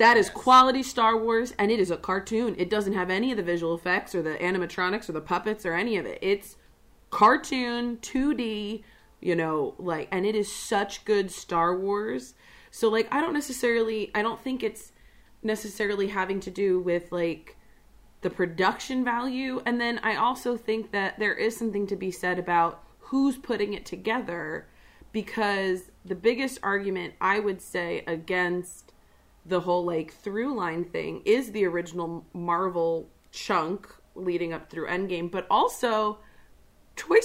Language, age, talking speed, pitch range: English, 30-49, 165 wpm, 180-235 Hz